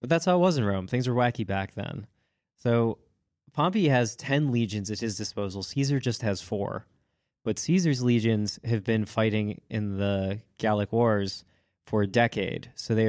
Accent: American